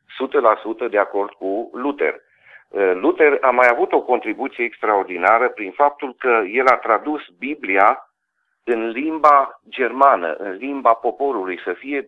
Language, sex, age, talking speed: Romanian, male, 40-59, 130 wpm